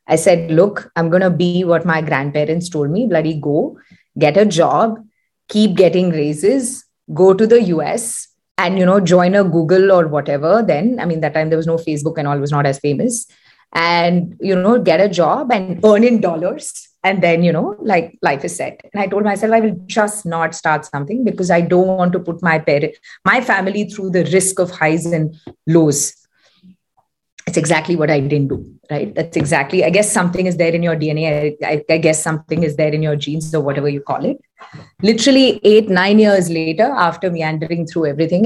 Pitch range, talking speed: 155-195 Hz, 205 wpm